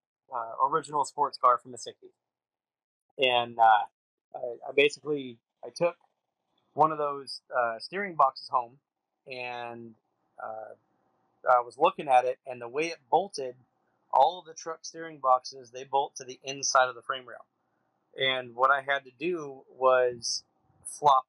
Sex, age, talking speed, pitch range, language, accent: male, 30-49, 160 wpm, 125-140 Hz, English, American